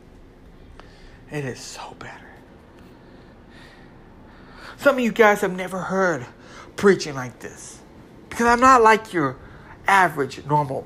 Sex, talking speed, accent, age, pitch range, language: male, 115 wpm, American, 60-79, 145-200 Hz, English